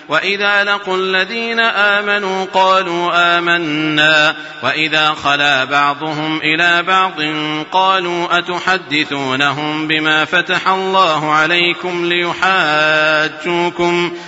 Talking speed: 75 wpm